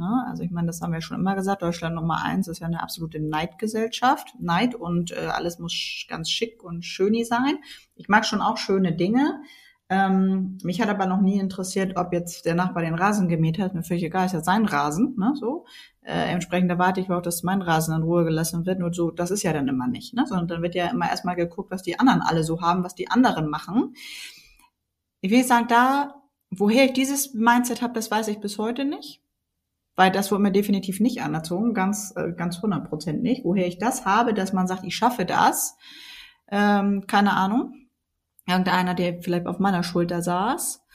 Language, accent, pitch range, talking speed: German, German, 180-230 Hz, 200 wpm